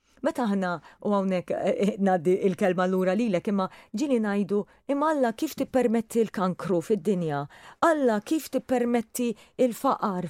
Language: English